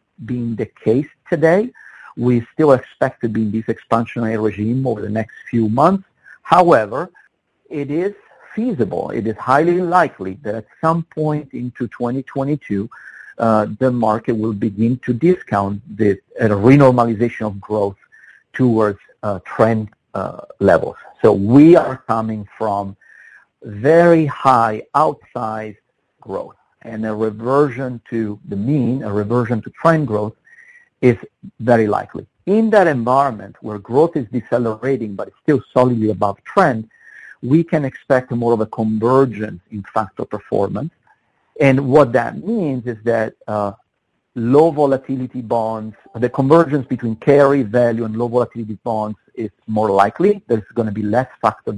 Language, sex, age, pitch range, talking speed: English, male, 50-69, 110-140 Hz, 140 wpm